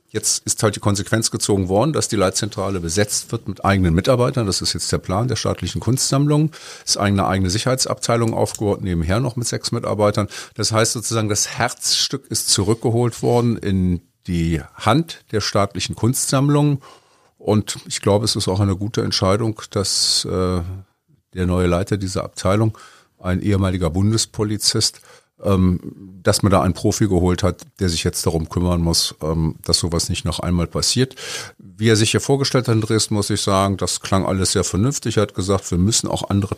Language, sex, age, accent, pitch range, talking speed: German, male, 50-69, German, 90-115 Hz, 180 wpm